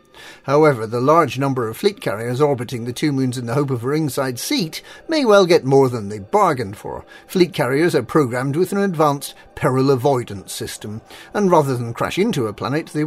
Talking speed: 200 wpm